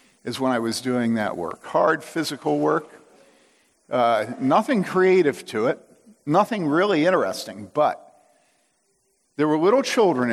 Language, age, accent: English, 50-69, American